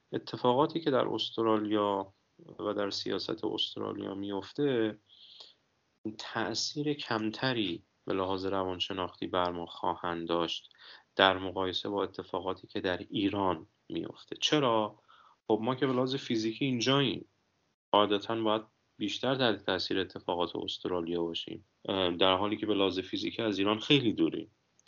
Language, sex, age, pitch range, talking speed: Persian, male, 30-49, 95-125 Hz, 125 wpm